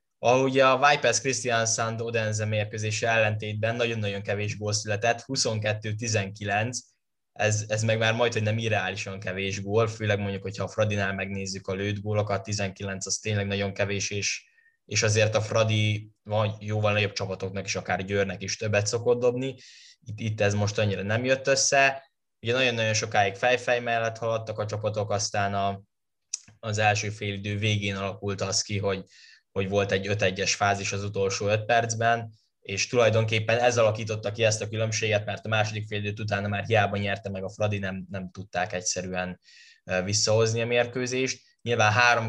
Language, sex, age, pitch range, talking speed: Hungarian, male, 10-29, 100-115 Hz, 160 wpm